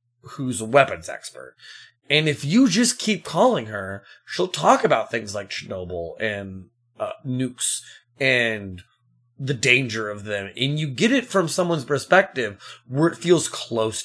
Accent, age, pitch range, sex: American, 30-49, 115-165 Hz, male